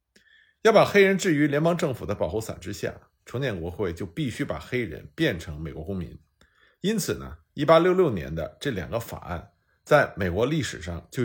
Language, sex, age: Chinese, male, 50-69